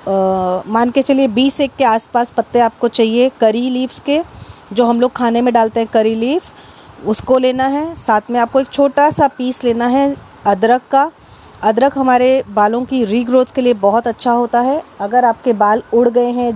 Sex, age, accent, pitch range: female, 30-49, native, 230-275 Hz